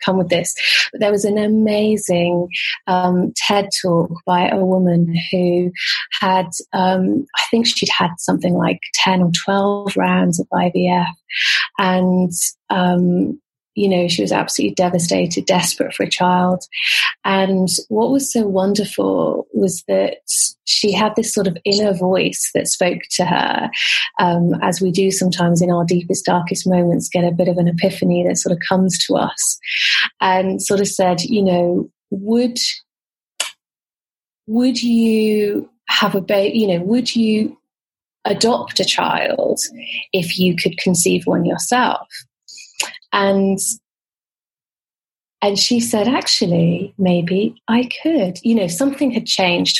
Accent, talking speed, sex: British, 145 wpm, female